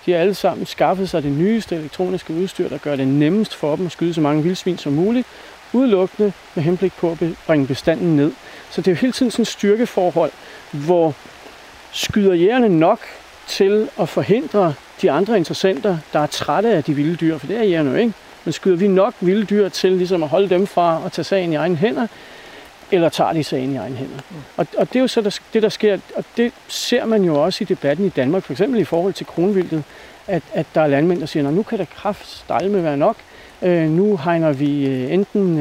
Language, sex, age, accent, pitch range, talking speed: Danish, male, 40-59, native, 155-200 Hz, 220 wpm